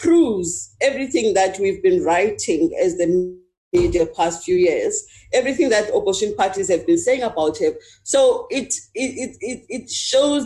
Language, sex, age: English, female, 40-59